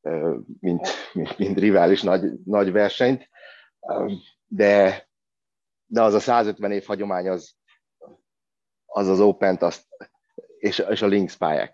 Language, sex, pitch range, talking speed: Hungarian, male, 95-125 Hz, 120 wpm